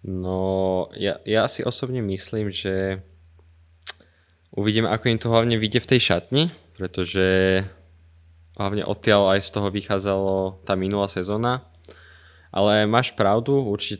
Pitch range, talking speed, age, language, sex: 90-105 Hz, 130 wpm, 20-39, Slovak, male